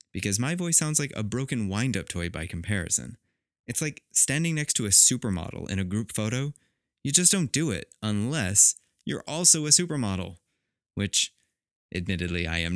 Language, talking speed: English, 170 wpm